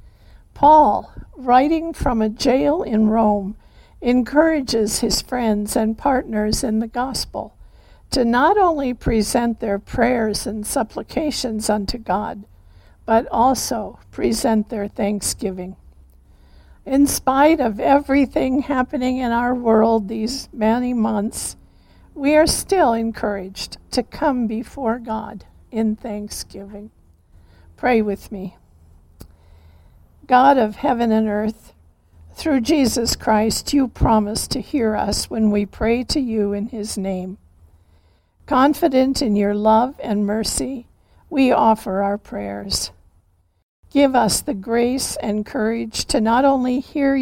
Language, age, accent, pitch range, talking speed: English, 60-79, American, 195-250 Hz, 120 wpm